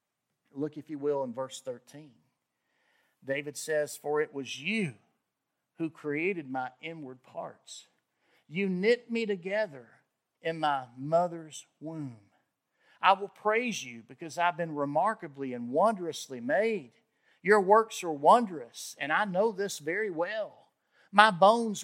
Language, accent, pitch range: English, American, 135-195 Hz